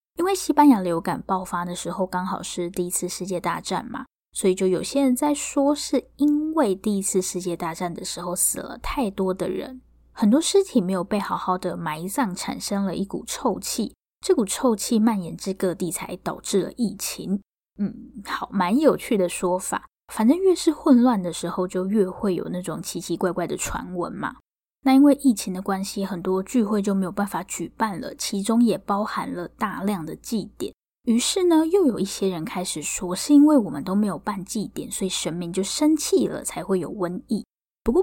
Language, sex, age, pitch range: Chinese, female, 10-29, 180-250 Hz